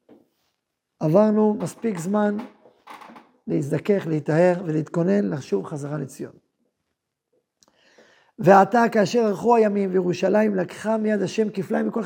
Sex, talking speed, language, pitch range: male, 95 wpm, Hebrew, 175-220 Hz